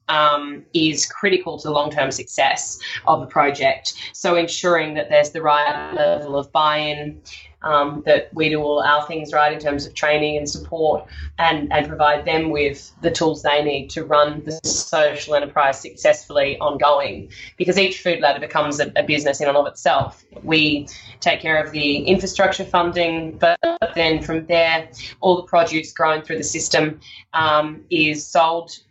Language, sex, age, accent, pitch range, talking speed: English, female, 10-29, Australian, 145-170 Hz, 165 wpm